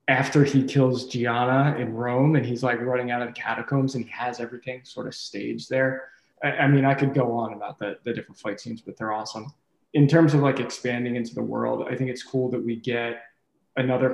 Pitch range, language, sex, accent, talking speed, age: 115-130 Hz, English, male, American, 225 wpm, 20-39